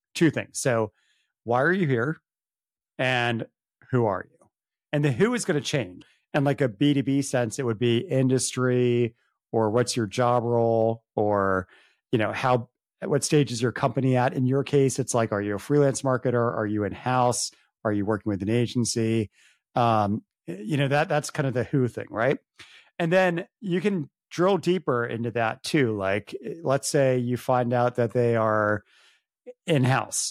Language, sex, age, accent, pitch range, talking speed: English, male, 40-59, American, 115-140 Hz, 180 wpm